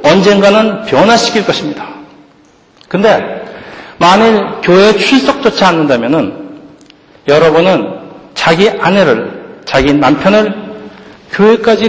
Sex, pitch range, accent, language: male, 135-190 Hz, native, Korean